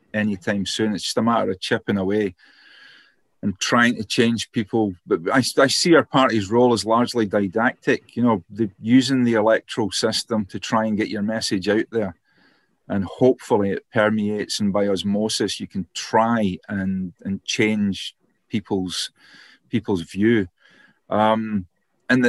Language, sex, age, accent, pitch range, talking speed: English, male, 40-59, British, 100-120 Hz, 155 wpm